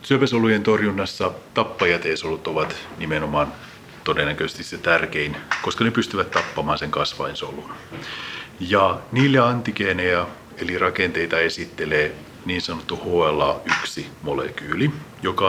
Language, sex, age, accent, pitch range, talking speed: Finnish, male, 40-59, native, 95-125 Hz, 95 wpm